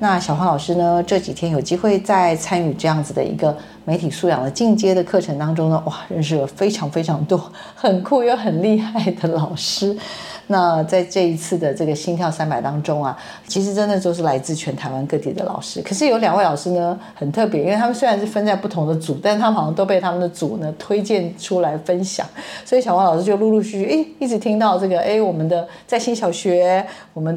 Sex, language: female, Chinese